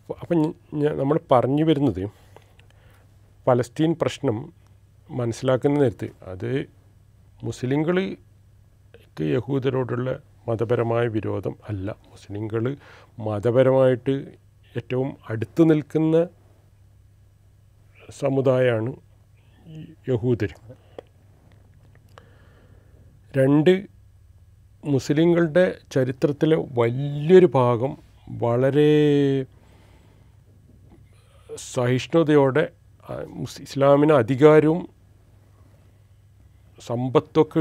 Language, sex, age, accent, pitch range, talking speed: Malayalam, male, 40-59, native, 105-135 Hz, 55 wpm